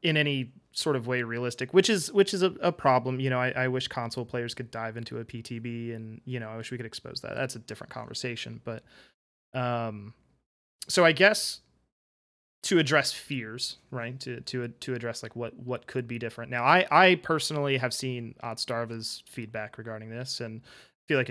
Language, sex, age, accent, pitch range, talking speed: English, male, 20-39, American, 115-140 Hz, 195 wpm